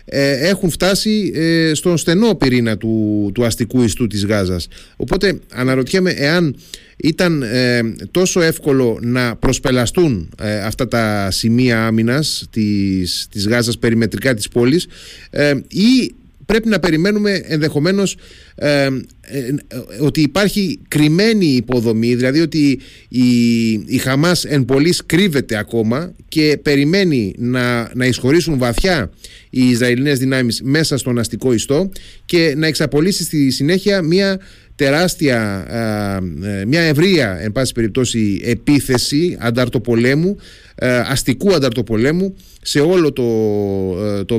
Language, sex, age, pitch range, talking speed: Greek, male, 30-49, 120-160 Hz, 110 wpm